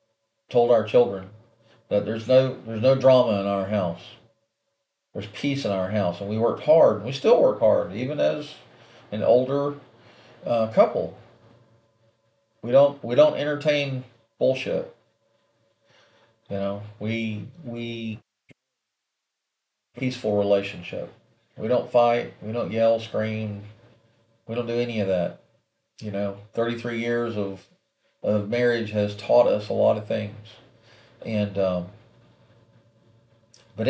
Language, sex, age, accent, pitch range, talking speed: English, male, 40-59, American, 105-120 Hz, 135 wpm